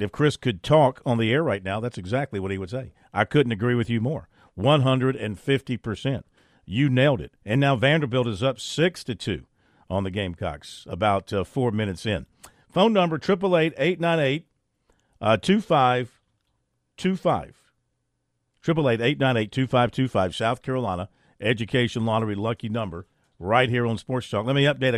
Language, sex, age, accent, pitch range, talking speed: English, male, 50-69, American, 110-145 Hz, 140 wpm